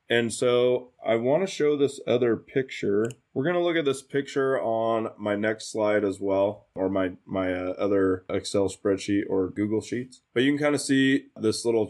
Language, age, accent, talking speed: English, 20-39, American, 200 wpm